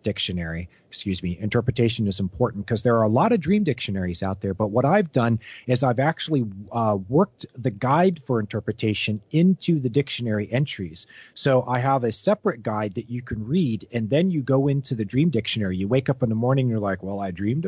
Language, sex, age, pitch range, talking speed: English, male, 40-59, 105-135 Hz, 210 wpm